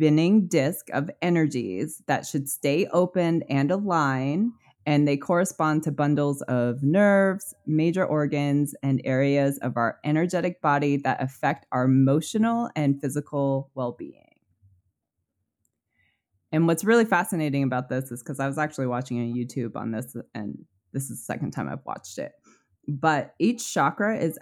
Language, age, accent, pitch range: English, 20-39, American, 130-160 Hz